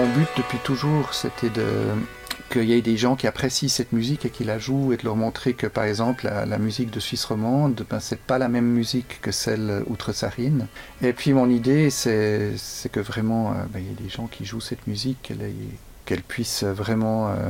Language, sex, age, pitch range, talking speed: French, male, 50-69, 110-125 Hz, 225 wpm